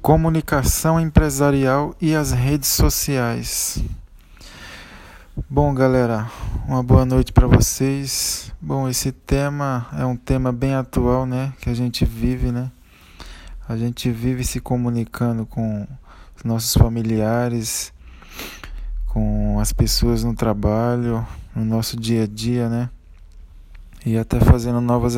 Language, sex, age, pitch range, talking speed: Portuguese, male, 20-39, 110-135 Hz, 120 wpm